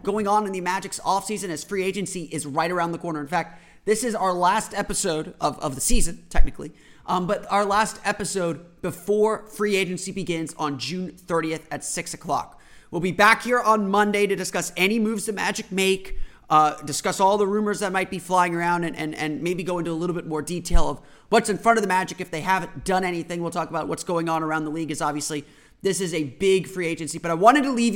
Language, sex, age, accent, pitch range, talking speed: English, male, 30-49, American, 160-200 Hz, 235 wpm